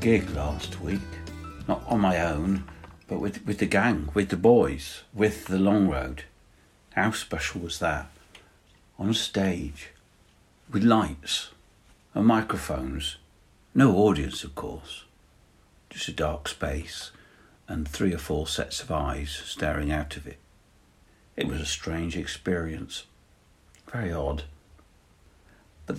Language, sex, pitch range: English, male, 75-100 Hz